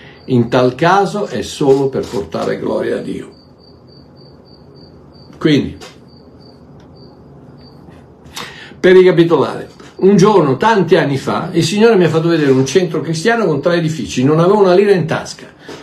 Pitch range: 130-195 Hz